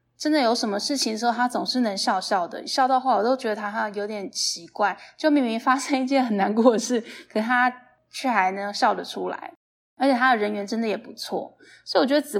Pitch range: 210-260 Hz